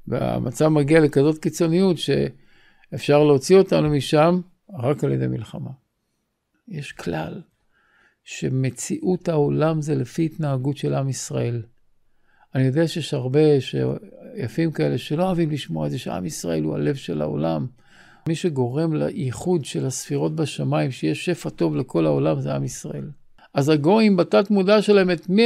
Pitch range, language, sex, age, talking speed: 125-175 Hz, Hebrew, male, 50-69, 140 wpm